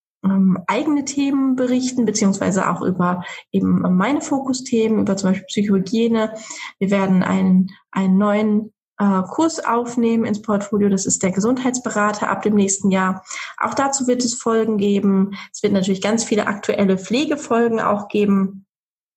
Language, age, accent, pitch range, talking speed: German, 20-39, German, 195-230 Hz, 145 wpm